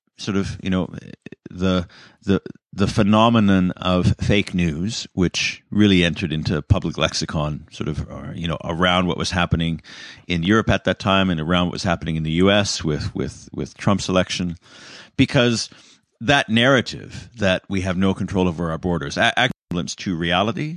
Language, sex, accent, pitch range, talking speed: English, male, American, 85-100 Hz, 170 wpm